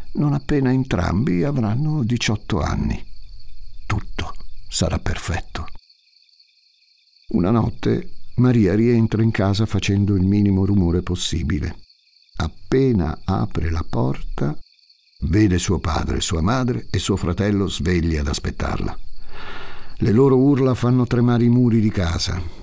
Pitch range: 90-110 Hz